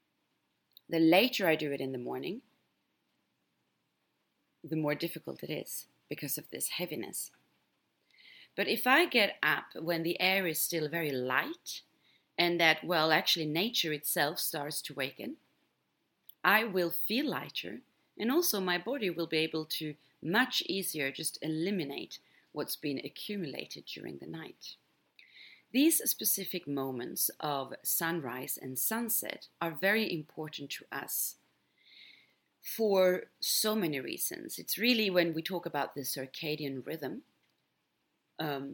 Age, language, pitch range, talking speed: 30-49, English, 145-190 Hz, 135 wpm